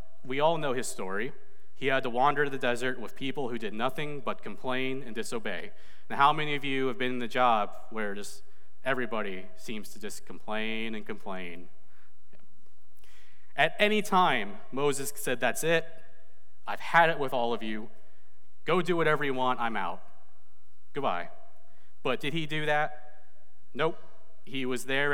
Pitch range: 115-150 Hz